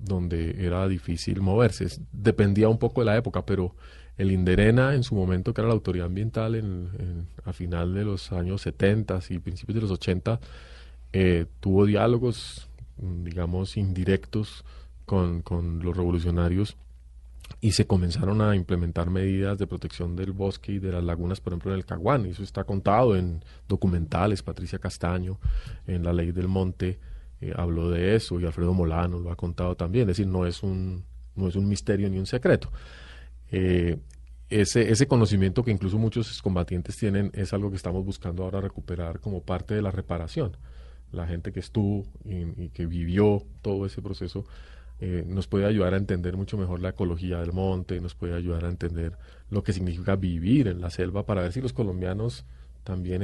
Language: Spanish